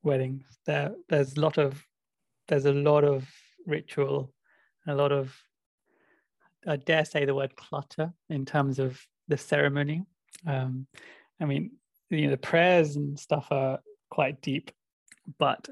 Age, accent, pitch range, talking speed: 20-39, British, 140-155 Hz, 145 wpm